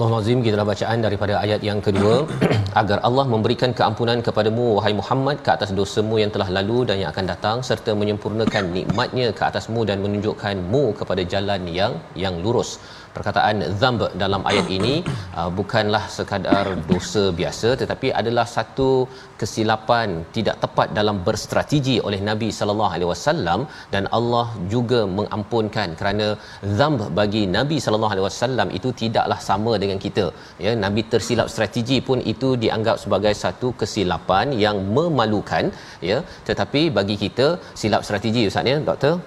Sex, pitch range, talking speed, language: male, 100-120 Hz, 145 wpm, Malayalam